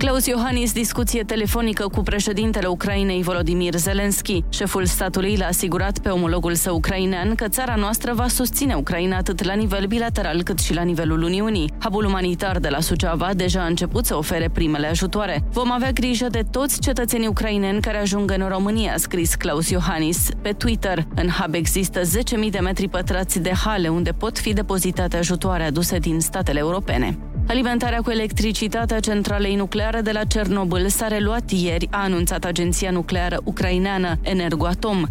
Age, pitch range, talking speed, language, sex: 20-39, 175-210 Hz, 165 wpm, Romanian, female